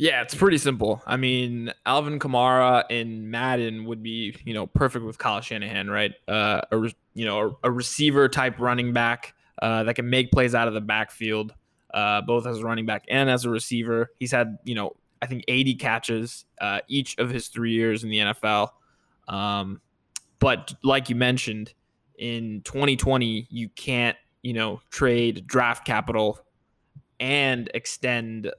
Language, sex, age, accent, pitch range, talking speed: English, male, 20-39, American, 110-125 Hz, 170 wpm